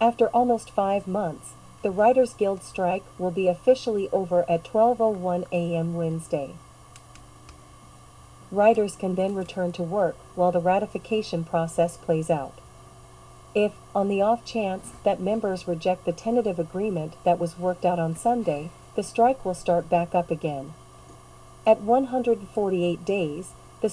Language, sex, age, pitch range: English, female, 40-59, 170-205 Hz